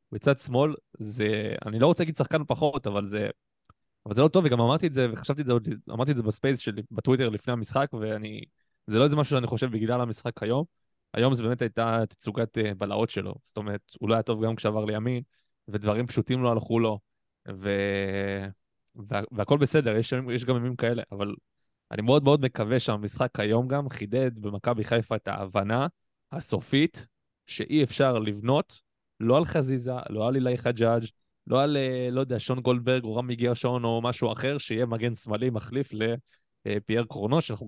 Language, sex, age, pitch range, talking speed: Hebrew, male, 20-39, 110-130 Hz, 170 wpm